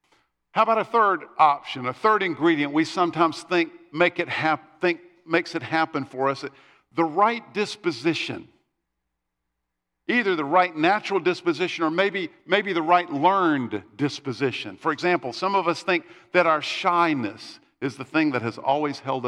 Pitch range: 130-190 Hz